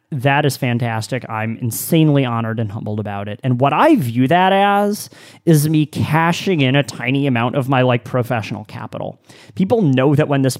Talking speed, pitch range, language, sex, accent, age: 185 wpm, 125-160 Hz, English, male, American, 30-49